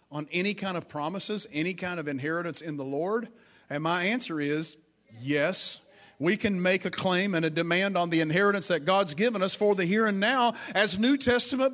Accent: American